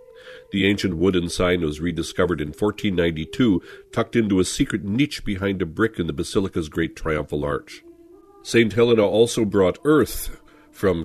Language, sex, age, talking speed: English, male, 50-69, 150 wpm